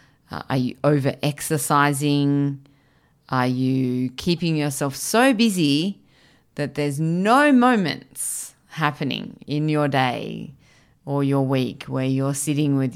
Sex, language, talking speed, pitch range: female, English, 115 wpm, 130-150 Hz